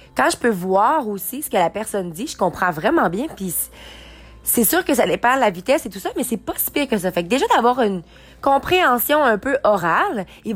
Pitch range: 200-270 Hz